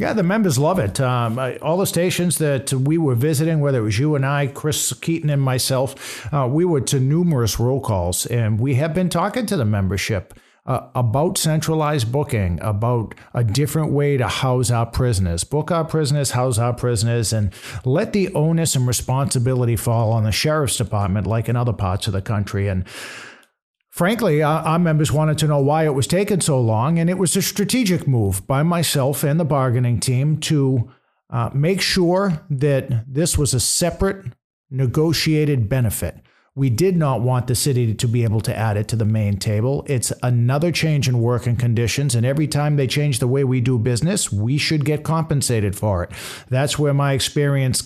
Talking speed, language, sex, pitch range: 190 wpm, English, male, 120-155 Hz